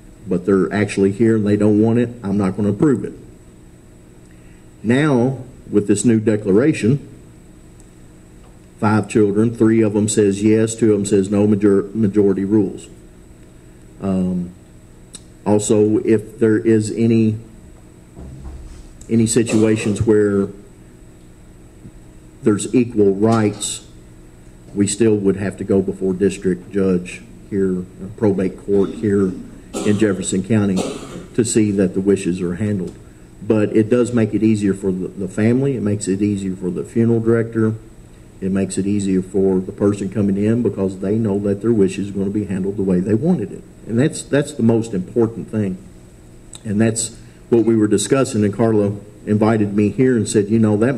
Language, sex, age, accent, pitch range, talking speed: English, male, 50-69, American, 85-110 Hz, 160 wpm